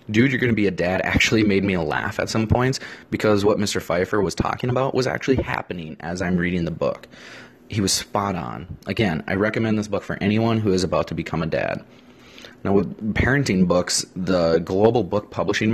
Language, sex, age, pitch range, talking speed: English, male, 30-49, 95-120 Hz, 210 wpm